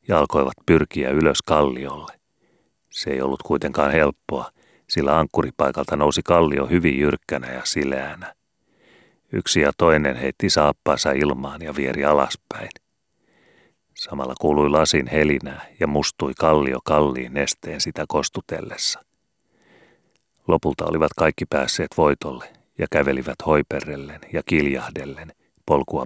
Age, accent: 30-49, native